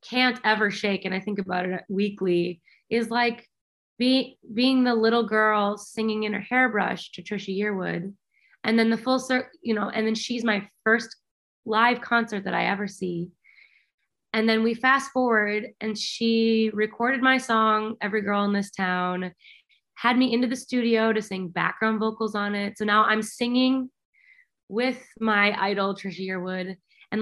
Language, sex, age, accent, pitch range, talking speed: English, female, 20-39, American, 205-255 Hz, 170 wpm